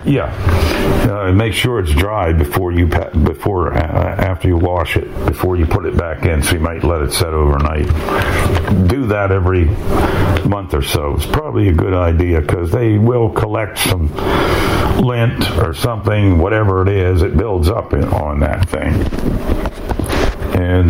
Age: 60-79